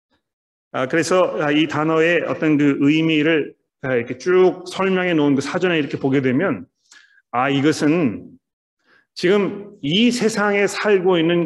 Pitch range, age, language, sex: 150-195 Hz, 40-59, Korean, male